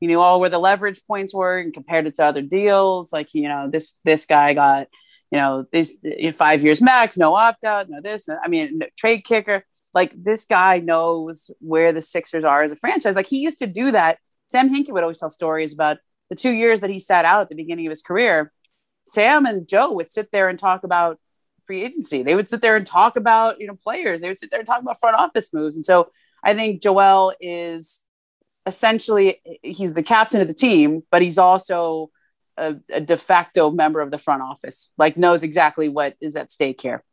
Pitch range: 155-205 Hz